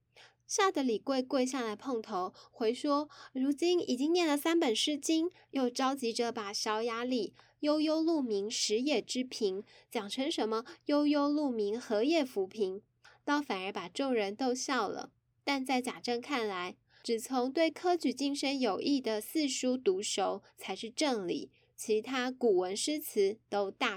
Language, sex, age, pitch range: Chinese, female, 10-29, 220-280 Hz